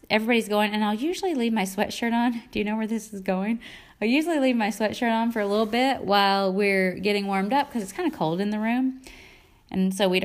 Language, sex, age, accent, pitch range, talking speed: English, female, 20-39, American, 185-245 Hz, 245 wpm